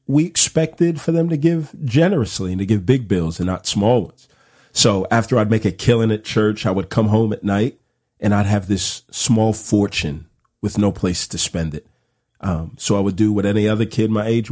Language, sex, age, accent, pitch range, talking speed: English, male, 40-59, American, 100-125 Hz, 220 wpm